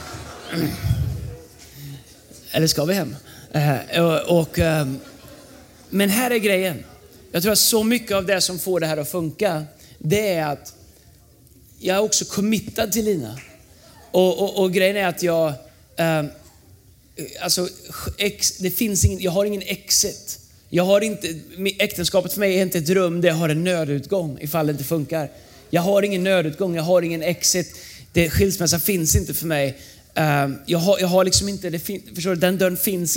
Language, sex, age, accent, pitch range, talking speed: Swedish, male, 30-49, native, 155-195 Hz, 175 wpm